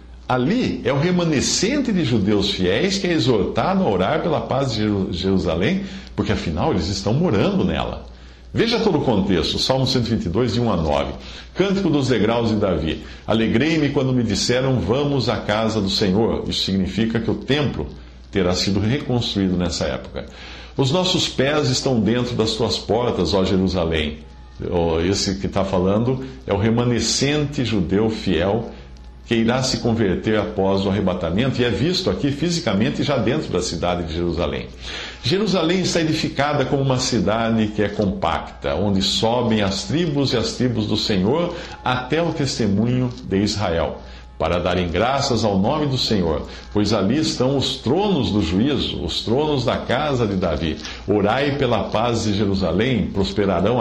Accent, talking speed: Brazilian, 160 wpm